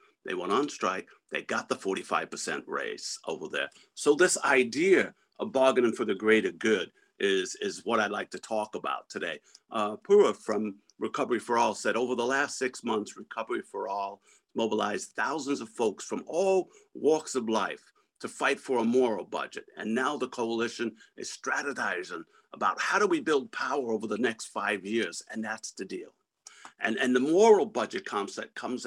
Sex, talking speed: male, 180 wpm